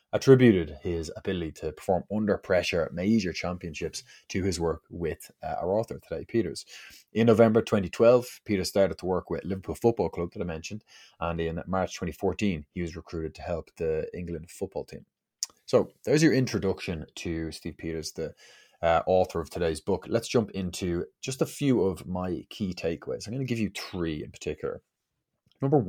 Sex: male